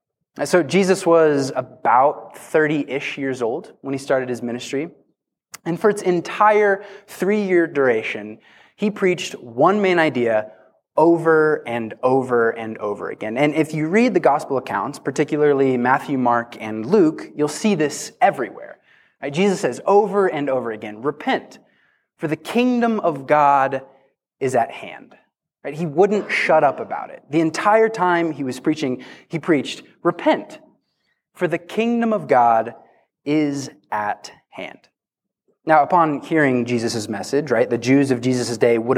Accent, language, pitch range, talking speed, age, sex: American, English, 130-185 Hz, 145 wpm, 20-39, male